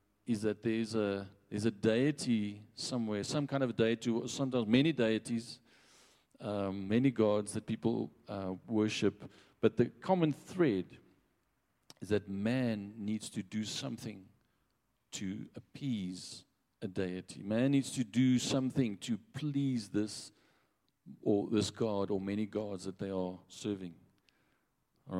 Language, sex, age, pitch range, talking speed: English, male, 50-69, 100-125 Hz, 135 wpm